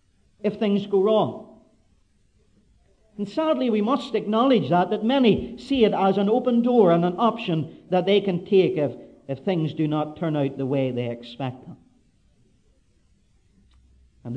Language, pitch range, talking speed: English, 150-215 Hz, 160 wpm